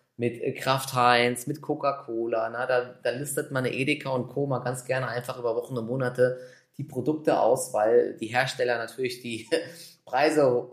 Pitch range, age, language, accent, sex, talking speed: 115-130 Hz, 20-39, German, German, male, 170 wpm